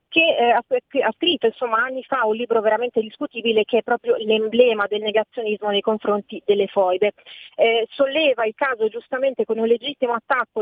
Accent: native